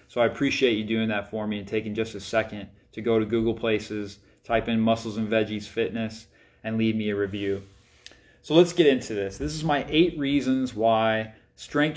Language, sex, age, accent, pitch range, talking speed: English, male, 30-49, American, 110-135 Hz, 205 wpm